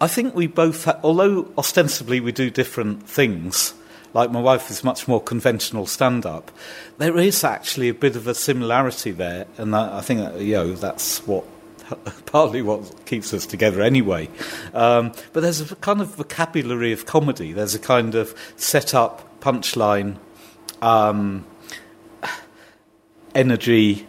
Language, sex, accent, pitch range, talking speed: English, male, British, 110-130 Hz, 145 wpm